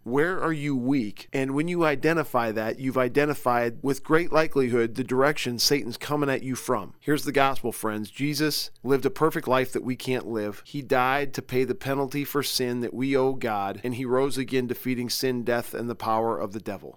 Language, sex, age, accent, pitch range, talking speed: English, male, 40-59, American, 120-140 Hz, 210 wpm